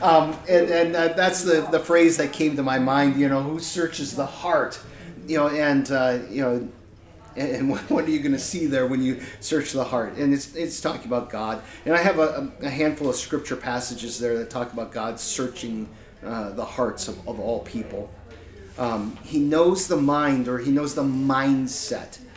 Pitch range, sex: 120-150 Hz, male